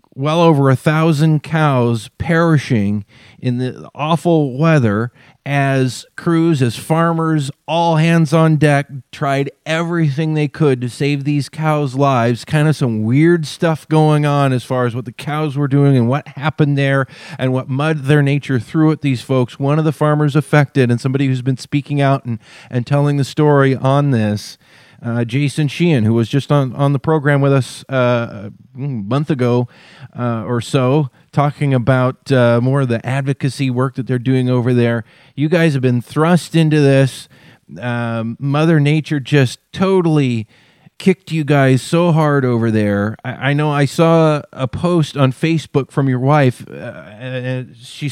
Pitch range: 125-155 Hz